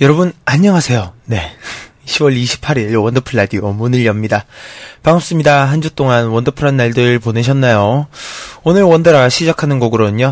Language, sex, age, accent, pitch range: Korean, male, 20-39, native, 115-145 Hz